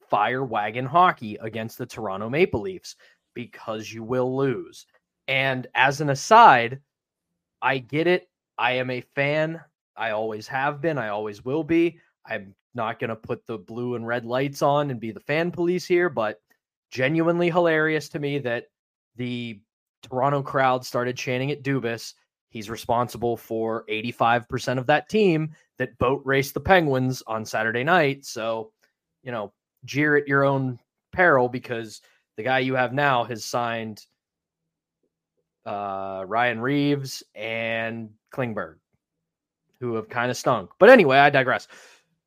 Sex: male